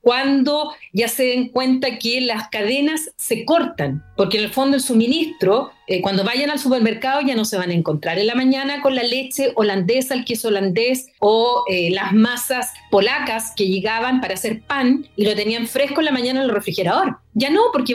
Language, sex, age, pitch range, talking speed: Spanish, female, 40-59, 225-305 Hz, 200 wpm